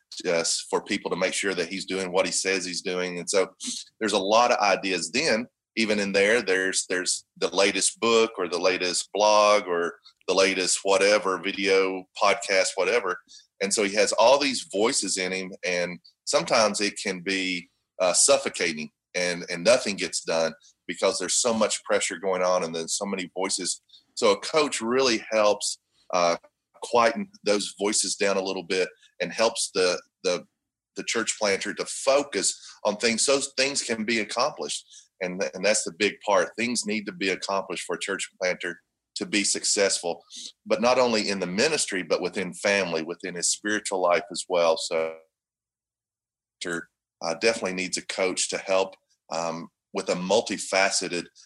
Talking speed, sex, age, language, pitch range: 175 wpm, male, 30-49, English, 90-115 Hz